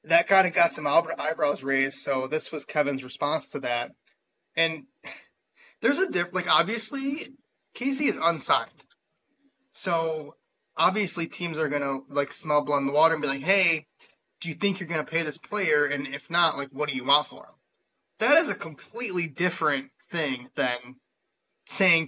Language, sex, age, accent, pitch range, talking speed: English, male, 20-39, American, 135-170 Hz, 180 wpm